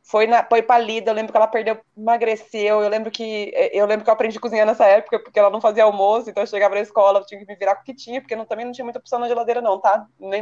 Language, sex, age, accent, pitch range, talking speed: Portuguese, female, 20-39, Brazilian, 185-260 Hz, 305 wpm